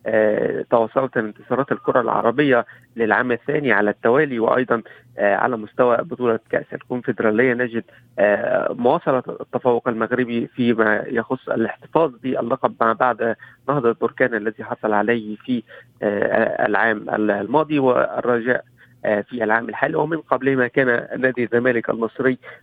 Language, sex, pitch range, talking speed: Arabic, male, 115-130 Hz, 125 wpm